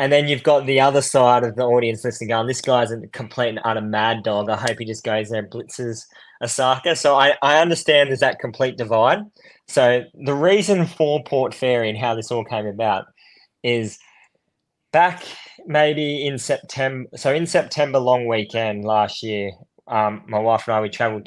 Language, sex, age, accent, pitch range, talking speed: English, male, 20-39, Australian, 110-135 Hz, 190 wpm